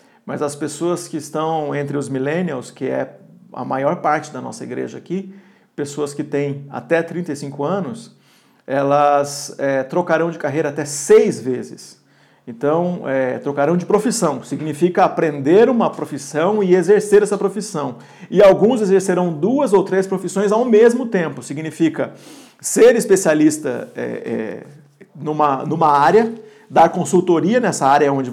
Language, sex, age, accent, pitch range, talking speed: Portuguese, male, 50-69, Brazilian, 155-205 Hz, 135 wpm